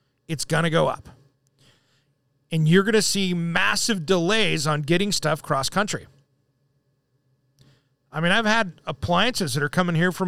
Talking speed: 150 wpm